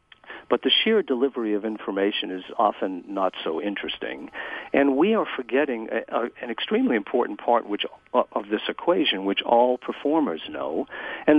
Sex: male